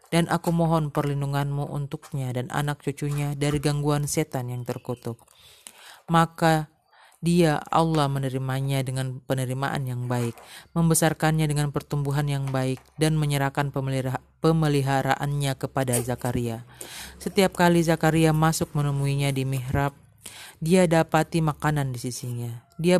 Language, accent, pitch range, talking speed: Indonesian, native, 130-160 Hz, 115 wpm